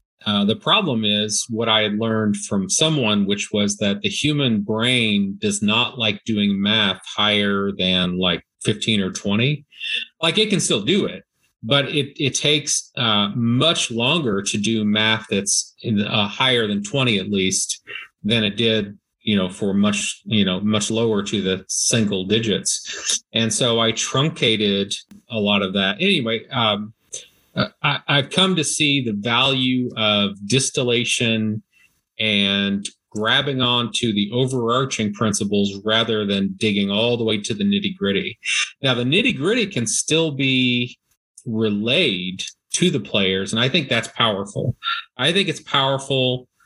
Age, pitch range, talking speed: 40-59, 105-130 Hz, 155 wpm